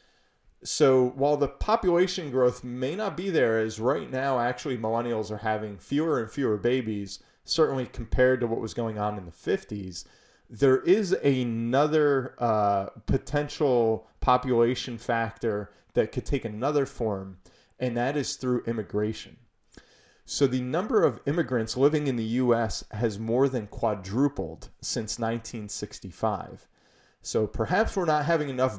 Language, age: English, 30-49